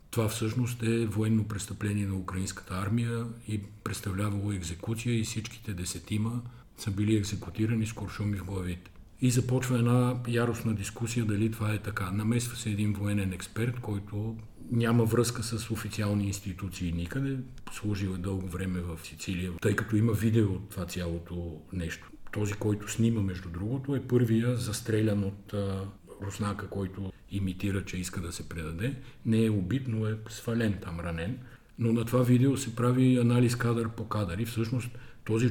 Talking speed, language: 155 wpm, Bulgarian